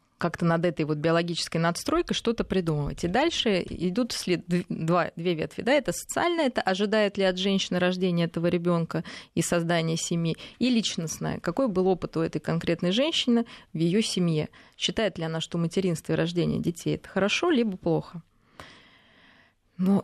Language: Russian